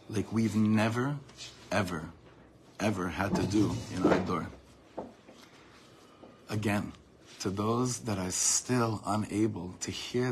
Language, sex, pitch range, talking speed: English, male, 95-120 Hz, 115 wpm